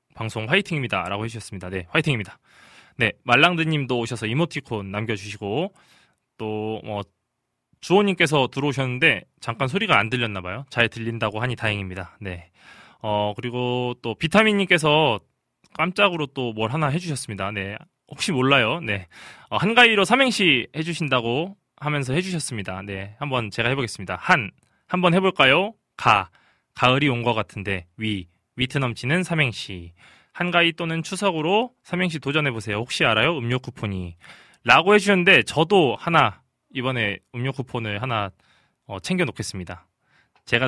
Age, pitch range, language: 20-39, 105-160 Hz, Korean